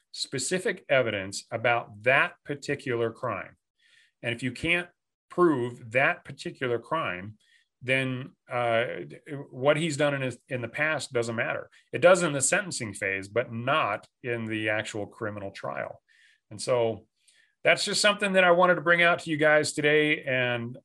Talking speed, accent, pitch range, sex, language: 160 wpm, American, 115-140 Hz, male, English